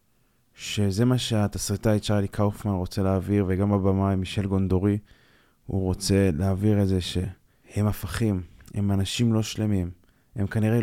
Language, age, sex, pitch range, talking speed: Hebrew, 20-39, male, 95-110 Hz, 140 wpm